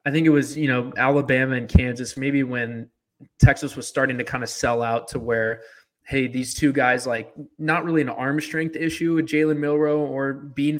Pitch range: 120-145 Hz